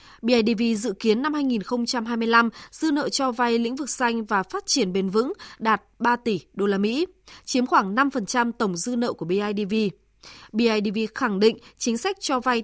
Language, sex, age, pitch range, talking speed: Vietnamese, female, 20-39, 210-265 Hz, 180 wpm